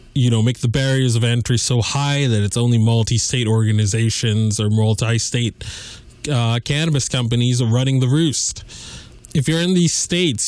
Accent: American